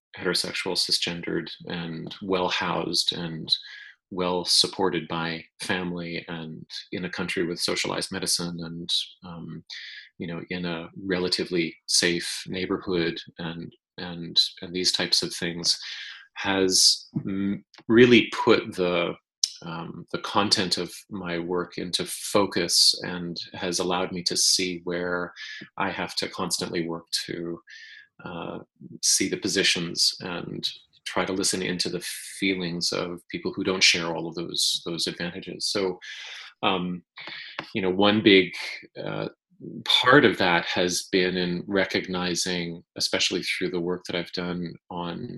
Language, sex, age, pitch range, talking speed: English, male, 30-49, 85-95 Hz, 135 wpm